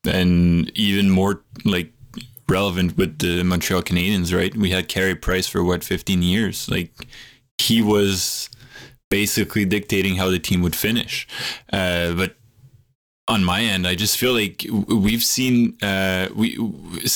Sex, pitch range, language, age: male, 90-105 Hz, English, 10-29